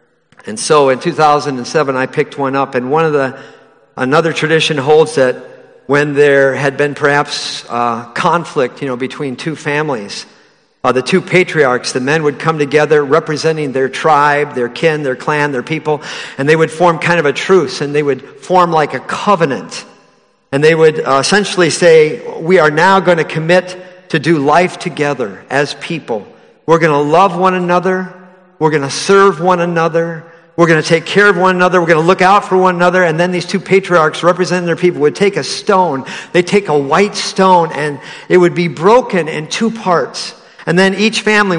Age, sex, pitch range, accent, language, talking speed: 50-69, male, 150-190 Hz, American, English, 195 wpm